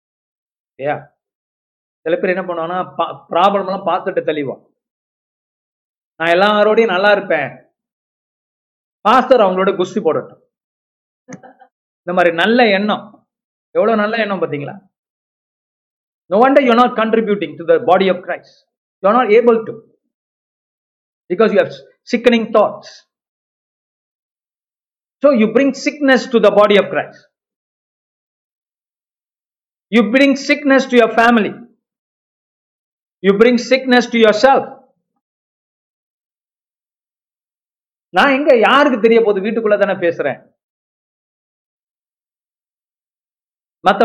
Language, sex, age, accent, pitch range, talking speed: Tamil, male, 50-69, native, 190-245 Hz, 35 wpm